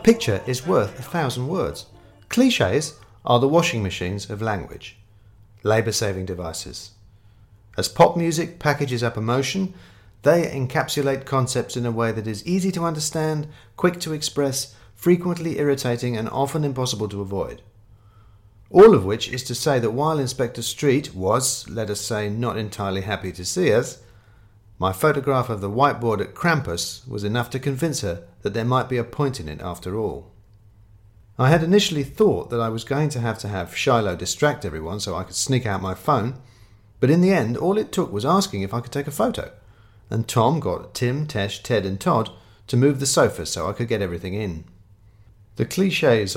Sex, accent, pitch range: male, British, 100-140 Hz